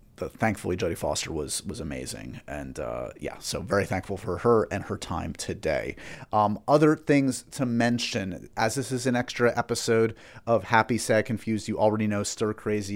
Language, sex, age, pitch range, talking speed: English, male, 30-49, 100-125 Hz, 175 wpm